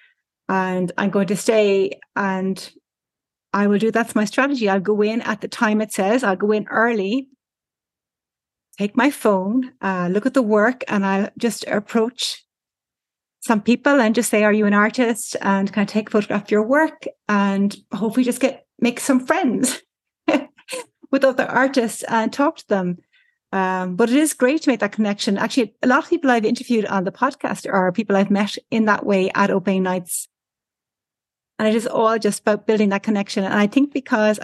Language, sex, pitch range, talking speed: English, female, 200-240 Hz, 195 wpm